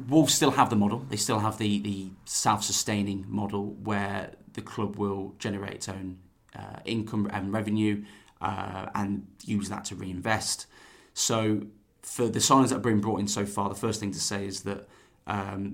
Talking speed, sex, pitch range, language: 185 wpm, male, 100-110 Hz, English